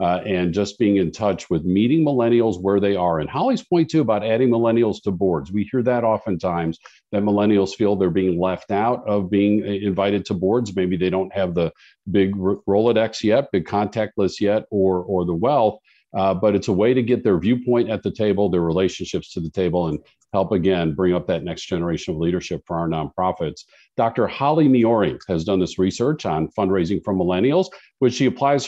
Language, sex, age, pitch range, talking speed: English, male, 50-69, 95-130 Hz, 205 wpm